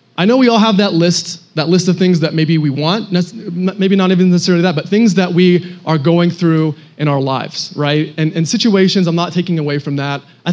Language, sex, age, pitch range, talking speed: English, male, 30-49, 145-180 Hz, 235 wpm